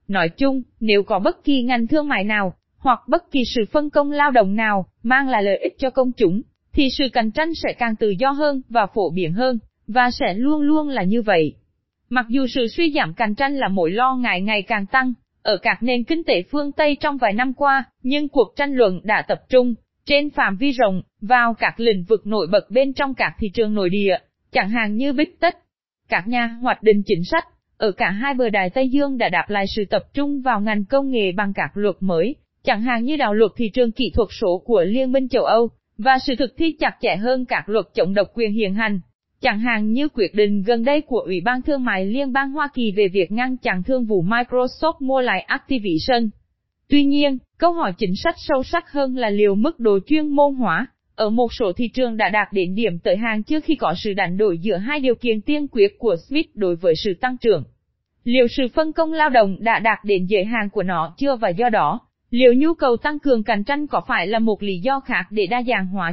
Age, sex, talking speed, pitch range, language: 20-39, female, 240 wpm, 210-275 Hz, Vietnamese